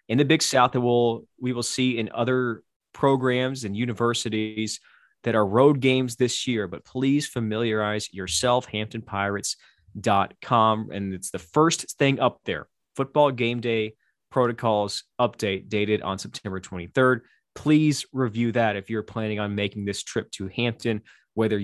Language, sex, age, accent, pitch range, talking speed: English, male, 20-39, American, 105-135 Hz, 145 wpm